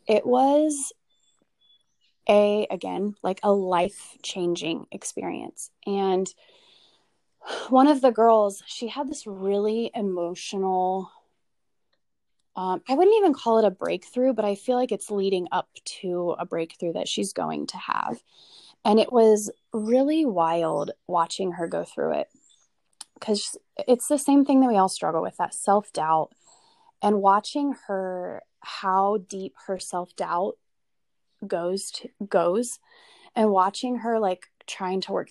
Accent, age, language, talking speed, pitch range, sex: American, 20-39, English, 135 wpm, 180-240 Hz, female